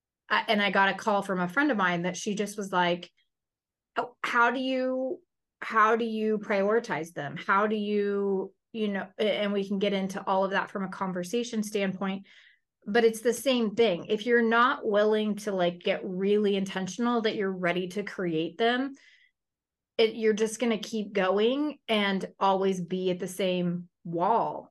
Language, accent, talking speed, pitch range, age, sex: English, American, 175 wpm, 195-230 Hz, 30-49, female